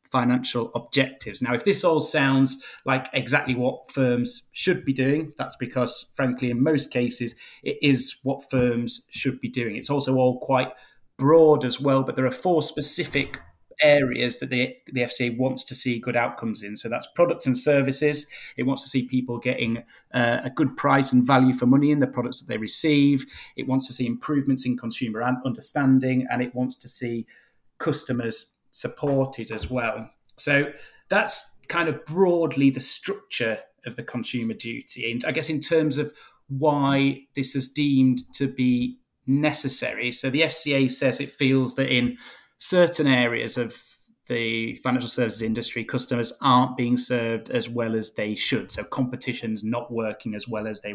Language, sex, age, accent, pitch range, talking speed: English, male, 30-49, British, 120-140 Hz, 175 wpm